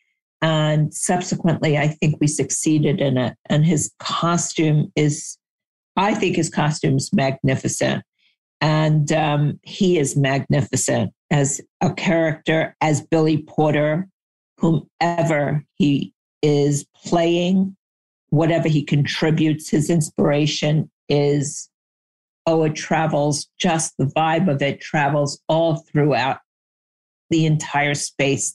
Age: 50-69